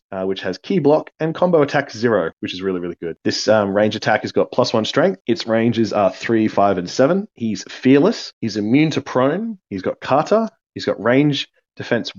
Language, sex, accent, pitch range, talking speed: English, male, Australian, 100-135 Hz, 210 wpm